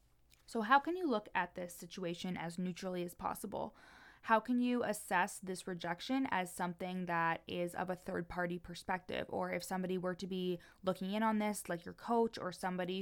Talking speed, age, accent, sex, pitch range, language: 195 wpm, 20-39, American, female, 175-210 Hz, English